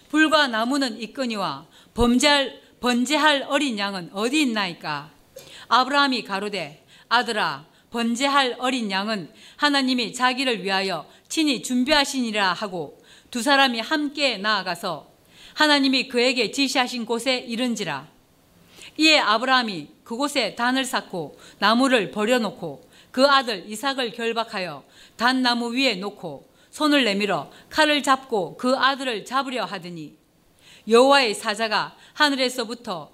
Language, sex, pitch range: Korean, female, 205-270 Hz